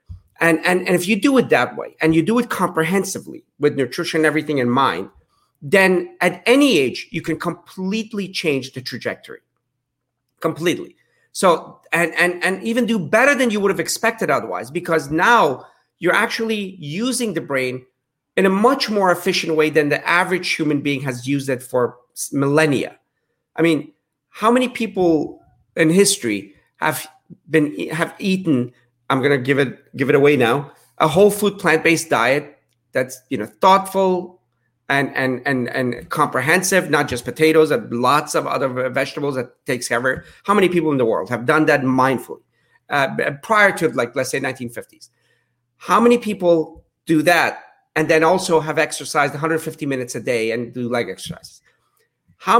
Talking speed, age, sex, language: 170 wpm, 40-59, male, English